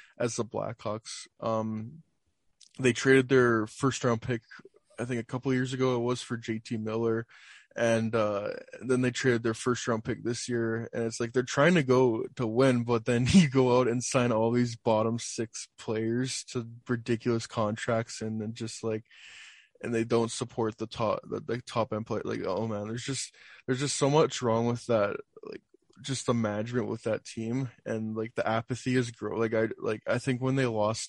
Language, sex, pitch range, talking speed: English, male, 115-125 Hz, 200 wpm